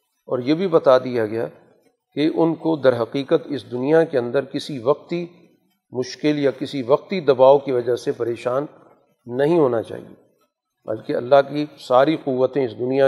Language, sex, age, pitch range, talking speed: Urdu, male, 40-59, 125-145 Hz, 165 wpm